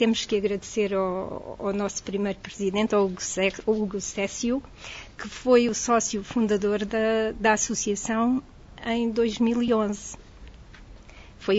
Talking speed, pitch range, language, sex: 115 wpm, 210-245 Hz, Portuguese, female